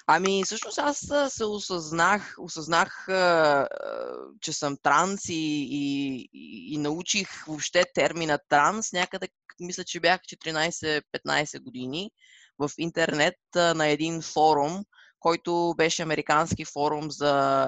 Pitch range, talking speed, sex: 145-180 Hz, 110 wpm, female